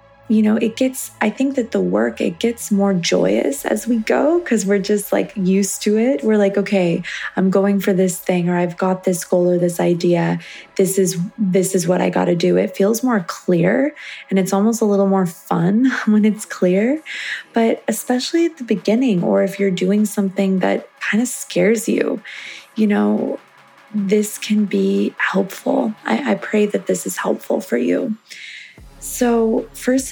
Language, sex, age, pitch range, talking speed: English, female, 20-39, 185-225 Hz, 185 wpm